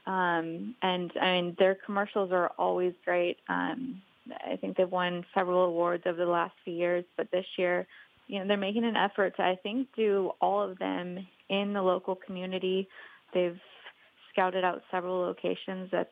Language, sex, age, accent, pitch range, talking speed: English, female, 20-39, American, 175-195 Hz, 175 wpm